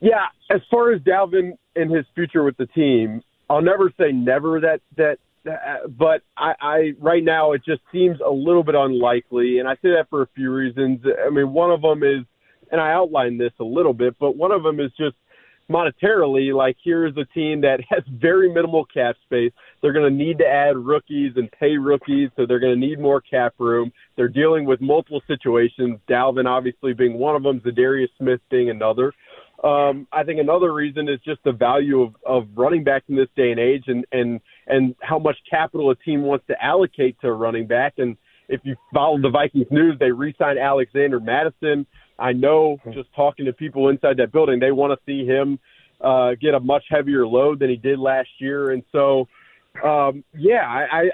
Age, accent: 30-49, American